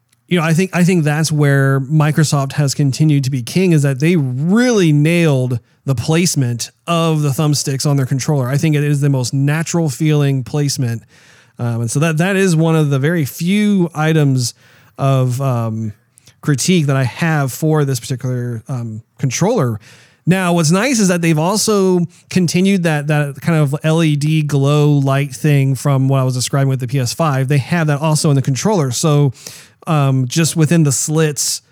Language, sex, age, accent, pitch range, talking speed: English, male, 30-49, American, 135-160 Hz, 185 wpm